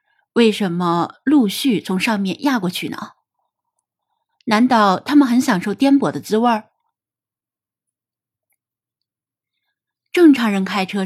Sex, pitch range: female, 190-275 Hz